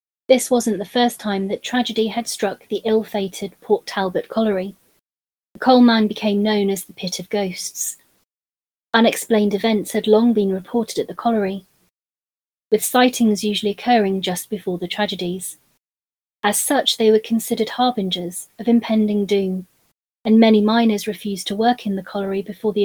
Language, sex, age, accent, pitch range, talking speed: English, female, 30-49, British, 200-235 Hz, 160 wpm